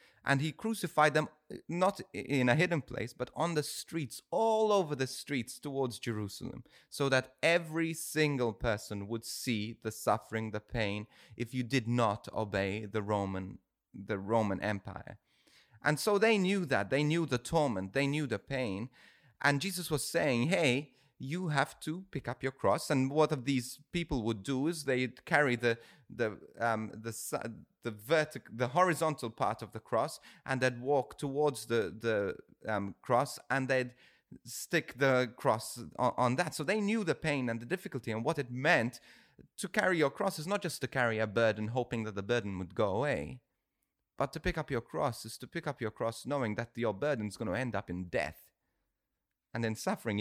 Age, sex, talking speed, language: 30-49, male, 190 wpm, English